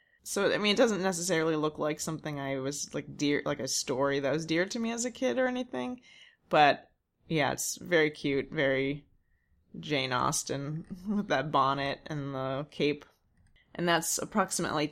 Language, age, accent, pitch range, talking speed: English, 20-39, American, 145-190 Hz, 175 wpm